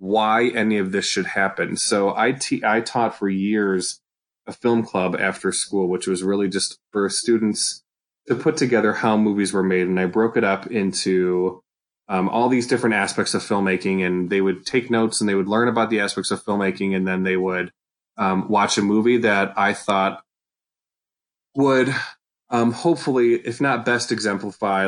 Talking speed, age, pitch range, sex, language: 185 wpm, 20-39, 95-115 Hz, male, English